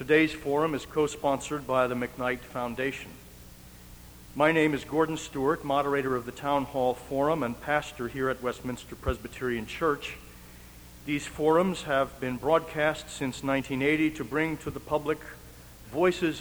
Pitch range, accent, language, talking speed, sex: 120-165 Hz, American, English, 145 wpm, male